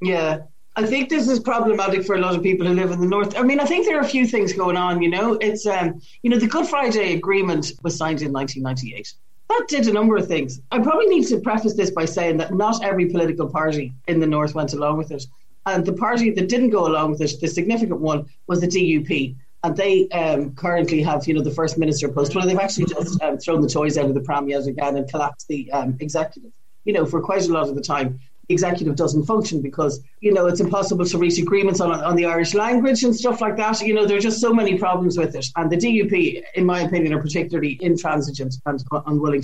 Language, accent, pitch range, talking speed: English, Irish, 145-195 Hz, 245 wpm